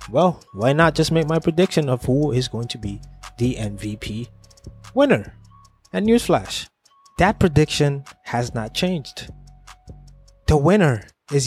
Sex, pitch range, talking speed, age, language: male, 115-160 Hz, 135 wpm, 20-39, English